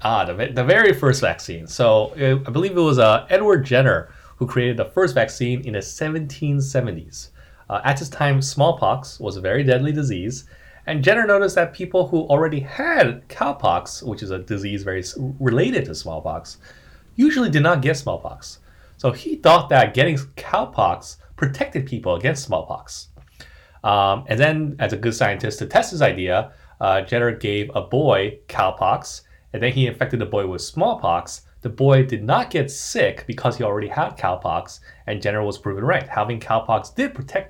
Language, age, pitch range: English, 30-49, 105-145 Hz